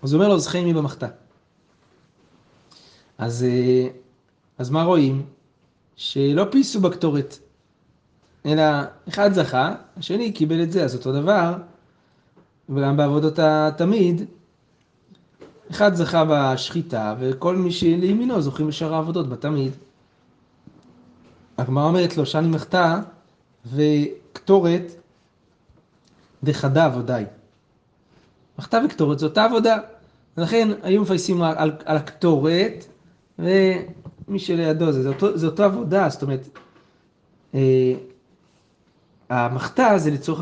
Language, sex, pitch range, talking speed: Hebrew, male, 135-175 Hz, 100 wpm